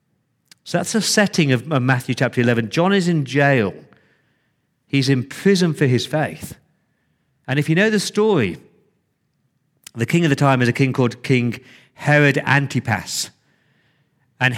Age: 40-59